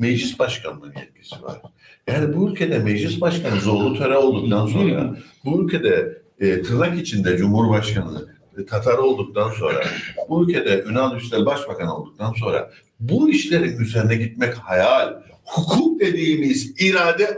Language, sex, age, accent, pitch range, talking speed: Turkish, male, 60-79, native, 120-200 Hz, 130 wpm